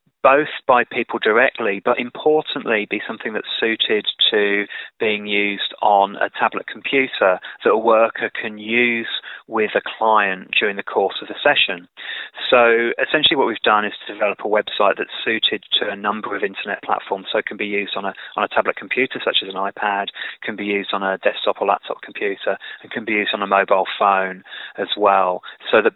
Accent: British